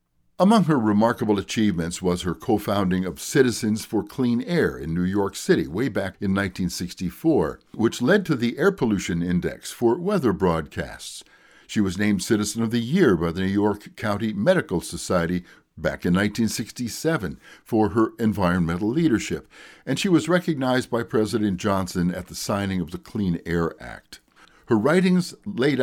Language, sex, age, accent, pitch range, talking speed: English, male, 60-79, American, 90-125 Hz, 160 wpm